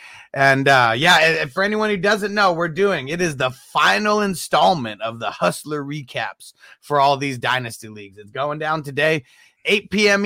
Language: English